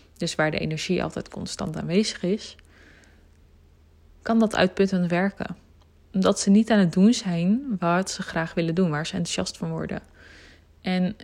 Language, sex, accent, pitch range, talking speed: Dutch, female, Dutch, 160-205 Hz, 160 wpm